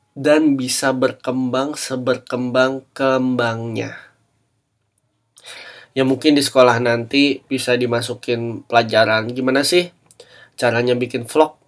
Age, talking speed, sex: 20-39, 90 wpm, male